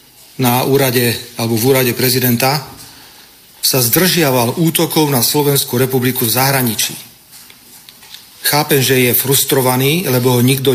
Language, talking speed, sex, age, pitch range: Slovak, 115 wpm, male, 40-59, 125-145 Hz